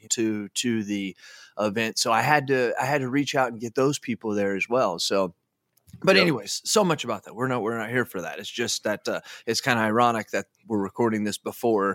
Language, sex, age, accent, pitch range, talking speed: English, male, 20-39, American, 110-160 Hz, 235 wpm